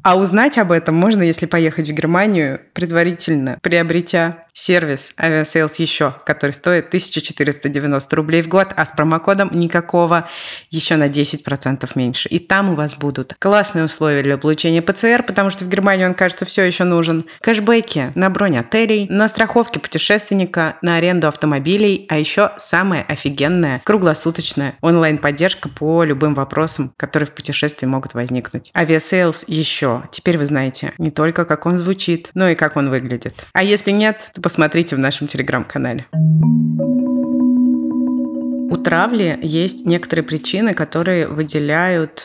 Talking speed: 140 wpm